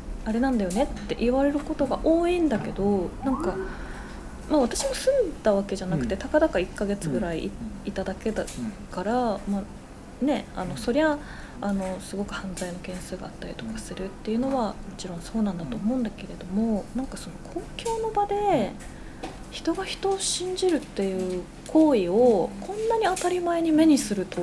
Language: Japanese